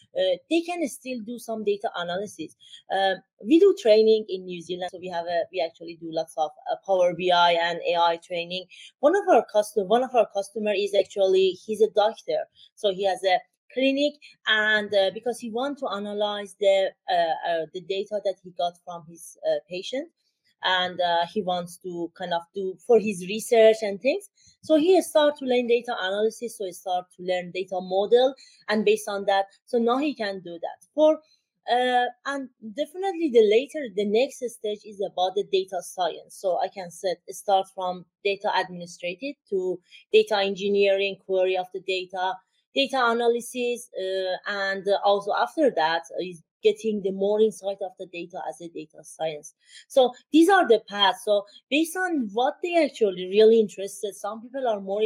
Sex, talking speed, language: female, 185 wpm, English